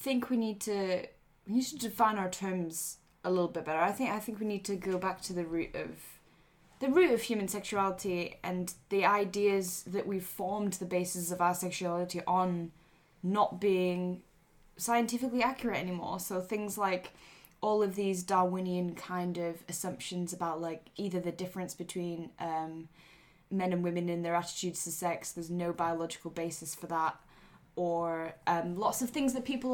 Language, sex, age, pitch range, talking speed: English, female, 10-29, 175-205 Hz, 175 wpm